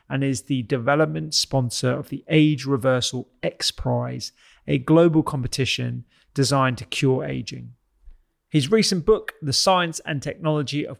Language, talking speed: English, 140 wpm